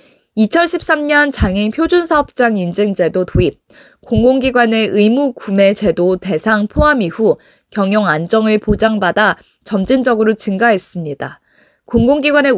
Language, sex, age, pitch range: Korean, female, 20-39, 195-280 Hz